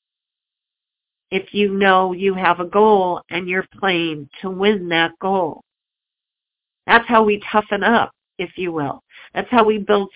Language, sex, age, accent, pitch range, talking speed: English, female, 50-69, American, 190-240 Hz, 155 wpm